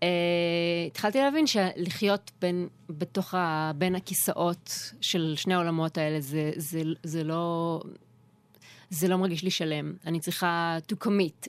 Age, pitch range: 20-39, 165-220 Hz